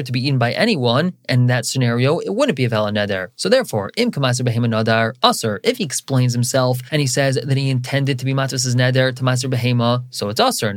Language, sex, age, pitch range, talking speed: English, male, 20-39, 125-160 Hz, 235 wpm